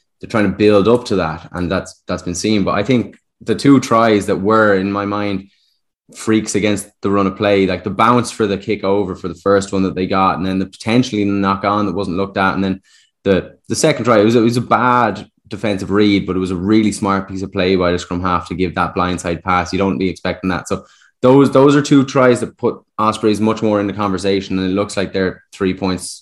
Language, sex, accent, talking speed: English, male, Irish, 250 wpm